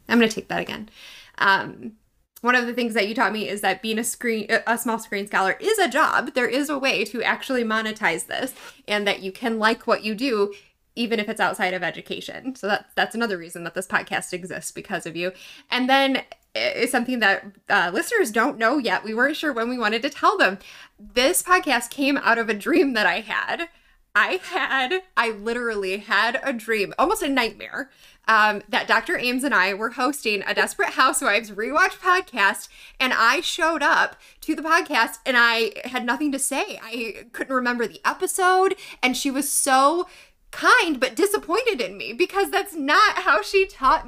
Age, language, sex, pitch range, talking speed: 20-39, English, female, 200-275 Hz, 200 wpm